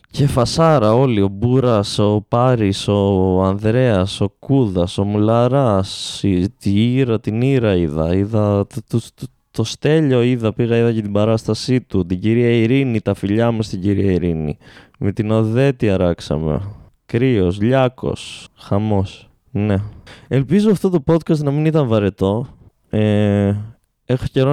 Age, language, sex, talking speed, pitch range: 20-39, Greek, male, 145 wpm, 95-120 Hz